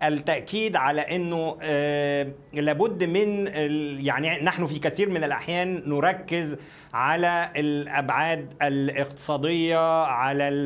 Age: 50-69